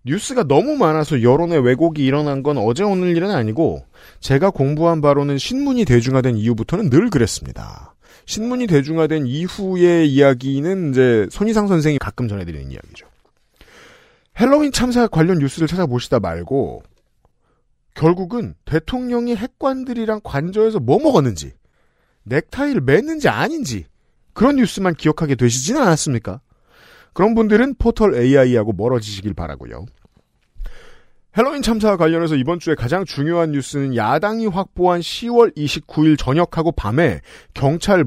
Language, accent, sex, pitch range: Korean, native, male, 130-205 Hz